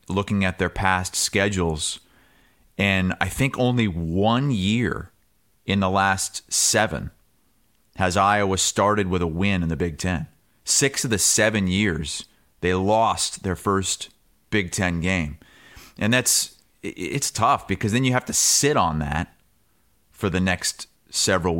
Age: 30-49